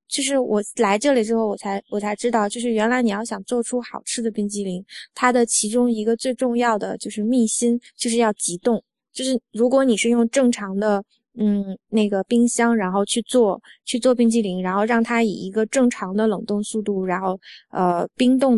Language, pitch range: Chinese, 200-245 Hz